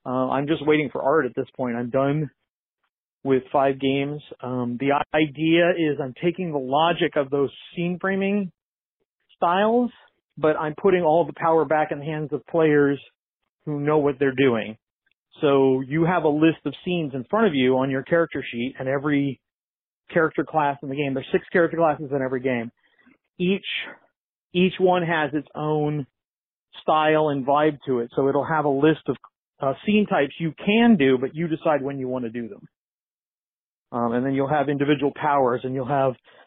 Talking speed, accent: 190 wpm, American